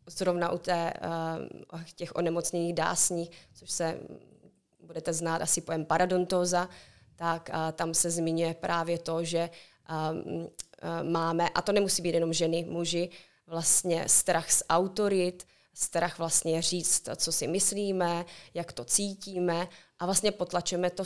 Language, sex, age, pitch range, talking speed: Slovak, female, 20-39, 165-180 Hz, 130 wpm